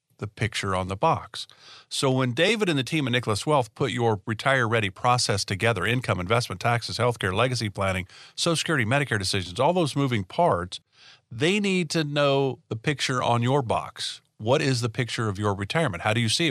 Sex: male